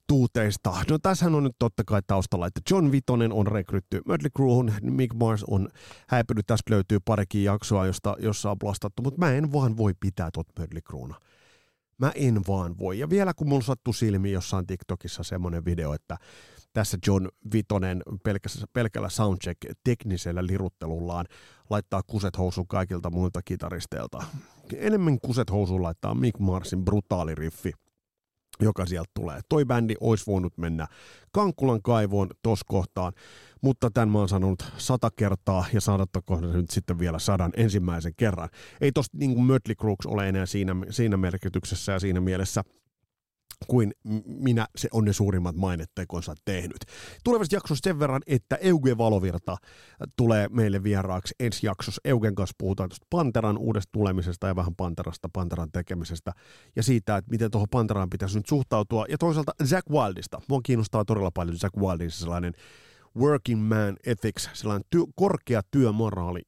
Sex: male